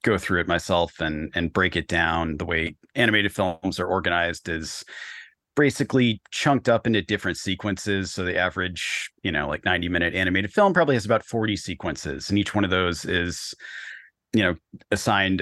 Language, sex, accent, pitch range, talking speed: English, male, American, 90-110 Hz, 180 wpm